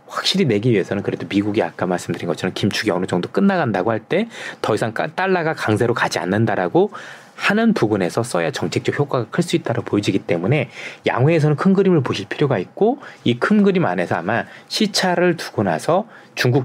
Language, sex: Korean, male